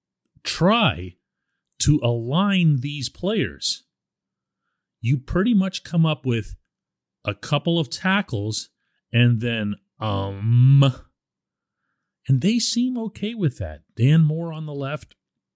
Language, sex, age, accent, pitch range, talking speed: English, male, 40-59, American, 105-165 Hz, 110 wpm